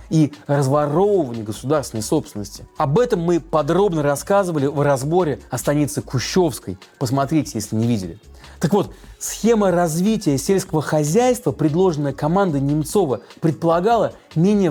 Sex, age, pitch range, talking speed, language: male, 30-49, 135-185 Hz, 115 wpm, Russian